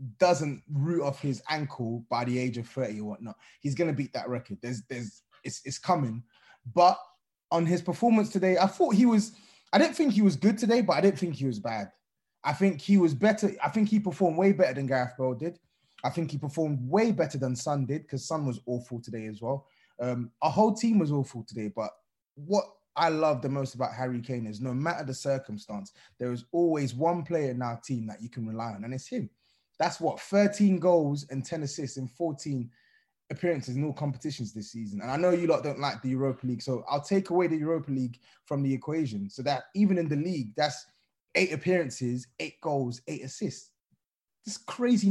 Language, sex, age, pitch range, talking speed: English, male, 20-39, 125-175 Hz, 220 wpm